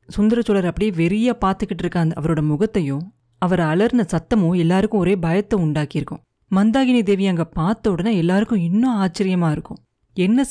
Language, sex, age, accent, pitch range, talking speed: Tamil, female, 30-49, native, 165-210 Hz, 145 wpm